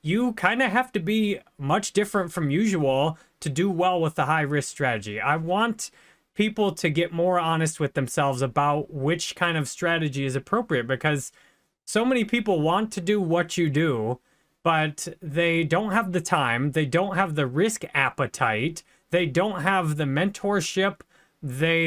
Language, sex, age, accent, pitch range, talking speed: English, male, 30-49, American, 160-210 Hz, 165 wpm